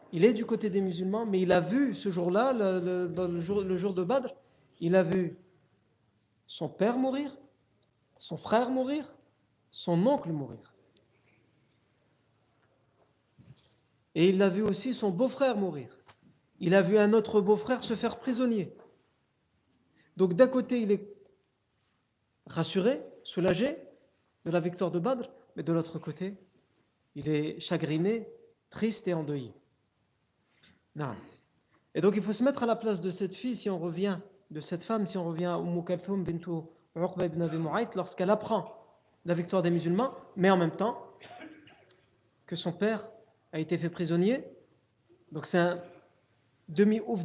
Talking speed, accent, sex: 150 wpm, French, male